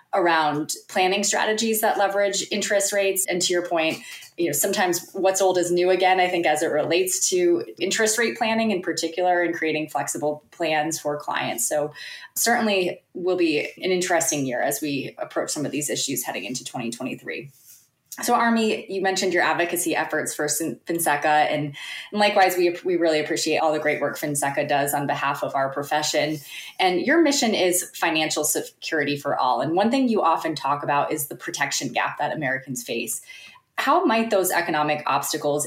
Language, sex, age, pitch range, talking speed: English, female, 20-39, 145-190 Hz, 175 wpm